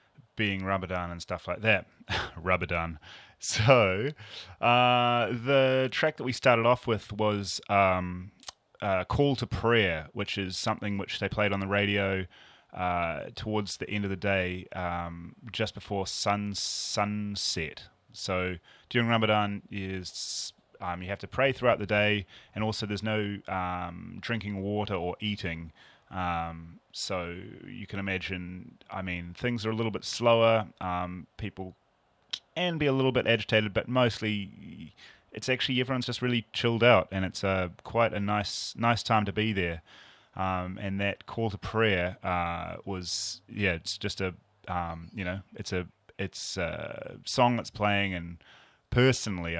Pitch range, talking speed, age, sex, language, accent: 90-110 Hz, 155 wpm, 30-49, male, English, Australian